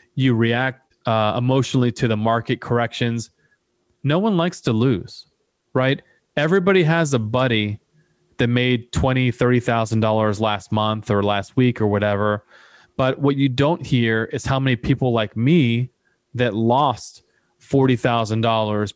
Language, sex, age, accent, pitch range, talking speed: English, male, 30-49, American, 115-135 Hz, 150 wpm